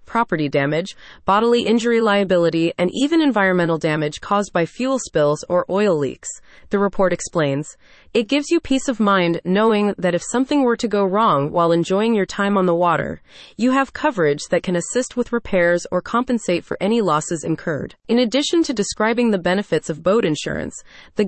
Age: 30-49